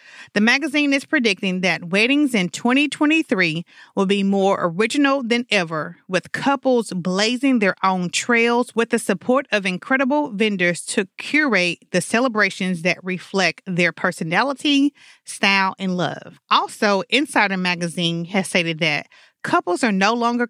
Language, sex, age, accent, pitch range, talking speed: English, female, 30-49, American, 185-250 Hz, 140 wpm